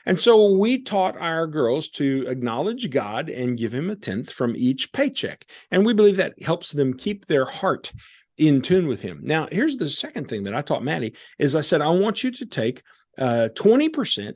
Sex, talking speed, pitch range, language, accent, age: male, 200 wpm, 130-195 Hz, English, American, 50-69